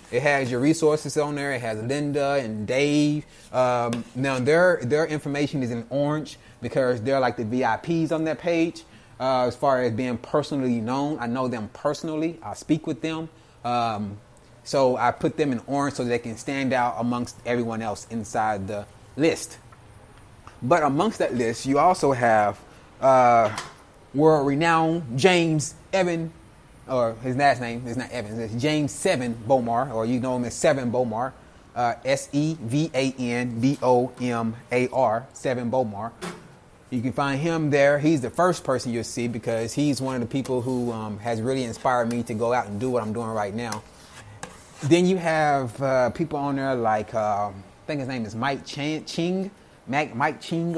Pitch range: 120-150 Hz